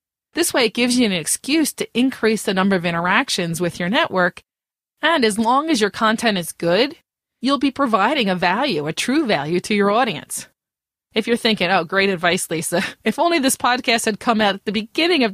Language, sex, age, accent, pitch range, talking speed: English, female, 30-49, American, 185-245 Hz, 205 wpm